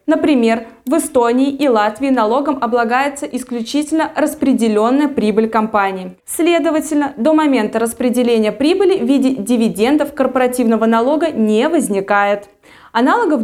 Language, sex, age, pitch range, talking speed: Russian, female, 20-39, 215-300 Hz, 105 wpm